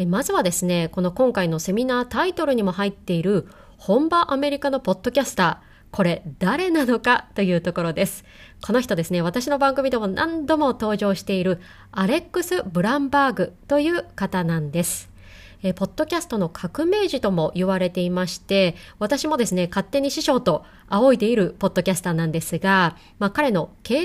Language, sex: Japanese, female